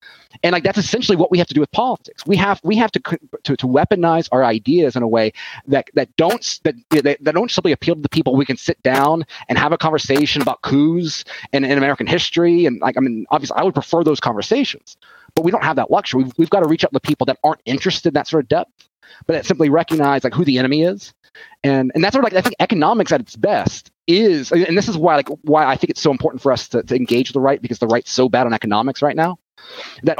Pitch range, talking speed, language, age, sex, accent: 125-165 Hz, 260 wpm, English, 30-49, male, American